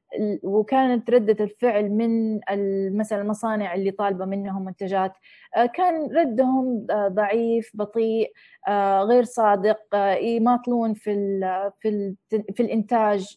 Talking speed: 80 wpm